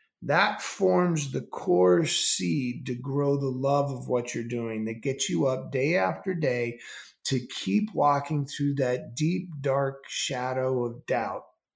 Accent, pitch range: American, 125-175 Hz